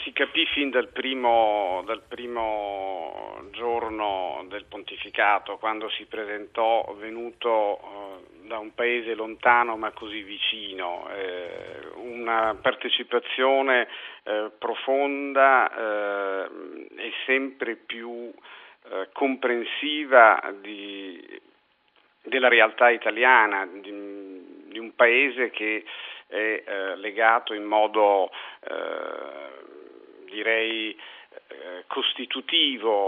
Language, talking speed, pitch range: Italian, 85 wpm, 105-135 Hz